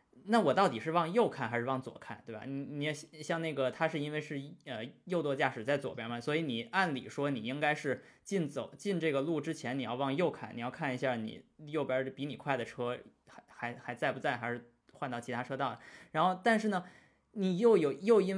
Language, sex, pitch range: Chinese, male, 130-200 Hz